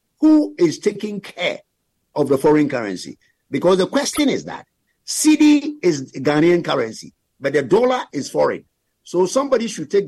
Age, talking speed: 50-69, 155 wpm